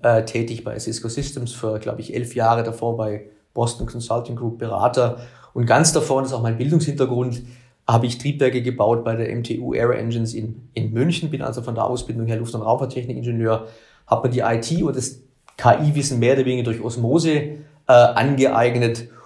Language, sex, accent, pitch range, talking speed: German, male, German, 115-135 Hz, 180 wpm